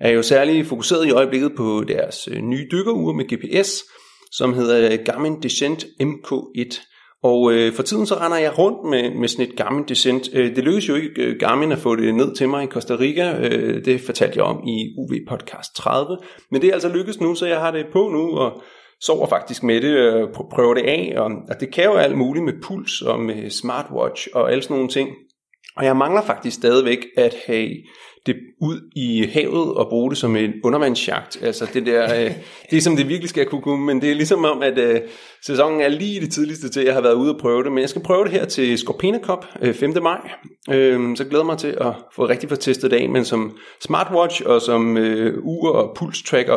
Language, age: Danish, 30-49